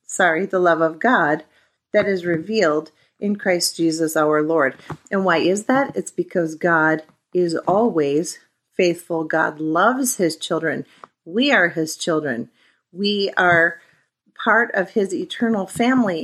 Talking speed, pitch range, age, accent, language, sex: 140 wpm, 165-220 Hz, 40-59, American, English, female